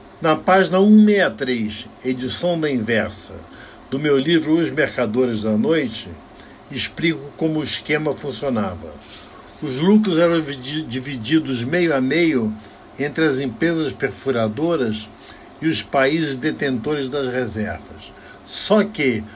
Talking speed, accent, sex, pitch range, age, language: 115 wpm, Brazilian, male, 120-165 Hz, 60-79, Portuguese